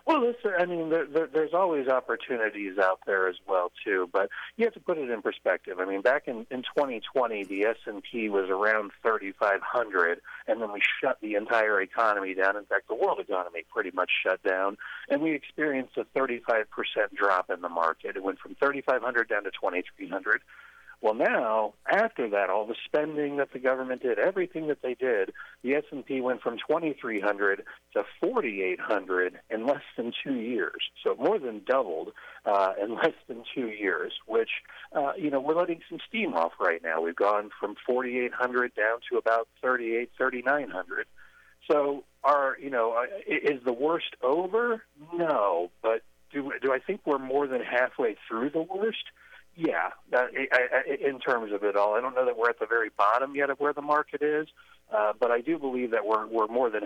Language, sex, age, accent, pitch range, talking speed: English, male, 40-59, American, 105-150 Hz, 195 wpm